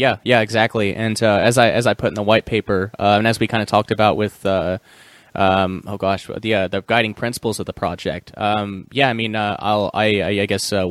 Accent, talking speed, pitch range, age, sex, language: American, 255 wpm, 100-115 Hz, 20-39, male, English